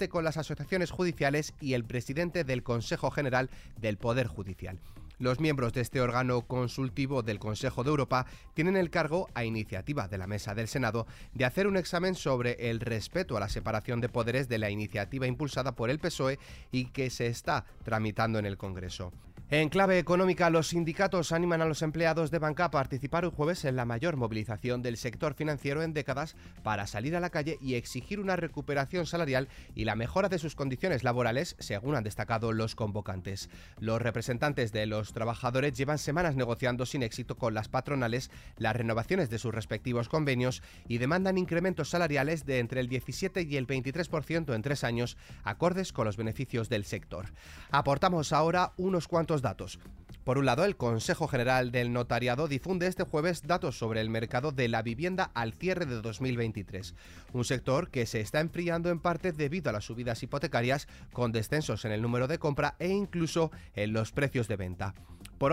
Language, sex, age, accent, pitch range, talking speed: Spanish, male, 30-49, Spanish, 115-160 Hz, 185 wpm